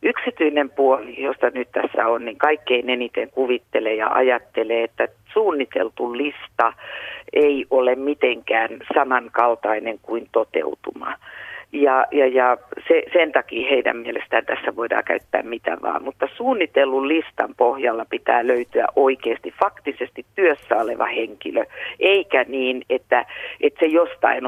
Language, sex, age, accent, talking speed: Finnish, female, 50-69, native, 125 wpm